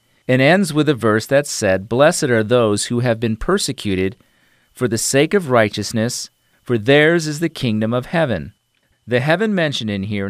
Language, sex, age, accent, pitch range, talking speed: English, male, 40-59, American, 110-150 Hz, 180 wpm